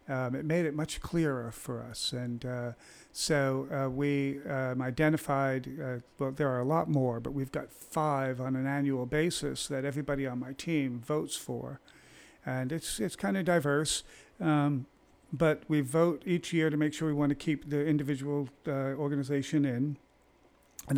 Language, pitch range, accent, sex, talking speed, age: English, 130-150 Hz, American, male, 175 wpm, 50-69